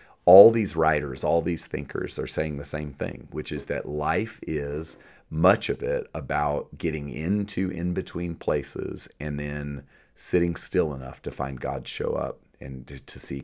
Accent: American